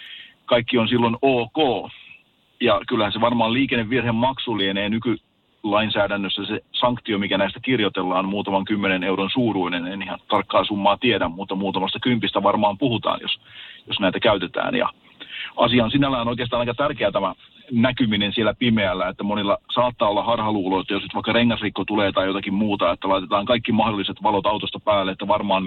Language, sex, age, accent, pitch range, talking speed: Finnish, male, 40-59, native, 100-120 Hz, 155 wpm